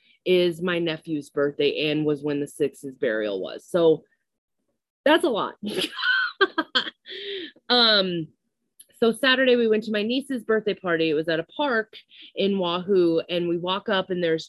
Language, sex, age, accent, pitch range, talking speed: English, female, 20-39, American, 170-235 Hz, 155 wpm